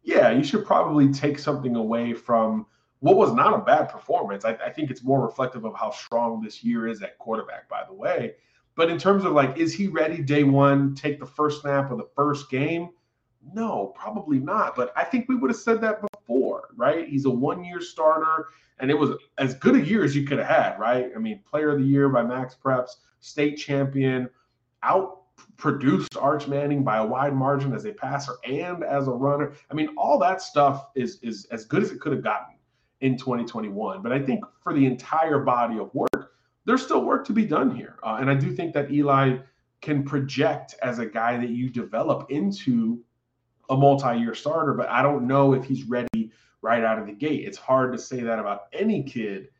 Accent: American